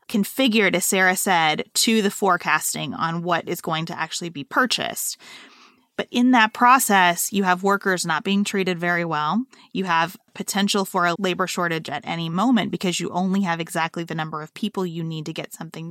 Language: English